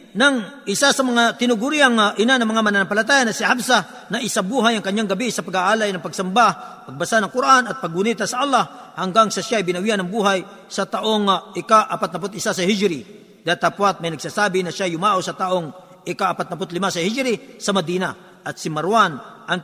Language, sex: Filipino, male